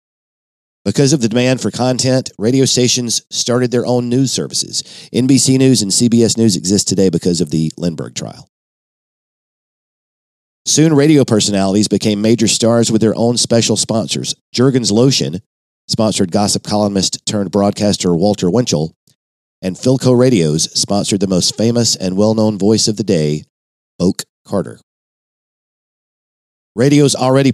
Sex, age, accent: male, 50-69, American